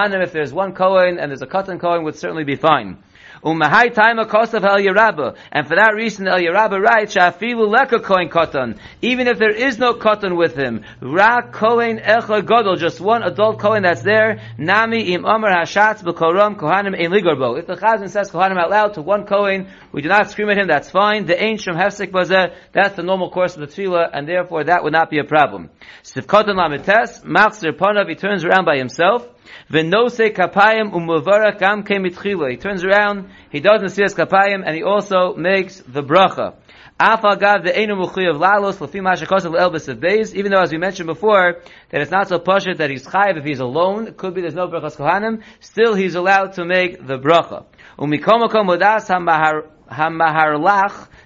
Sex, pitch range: male, 165-205 Hz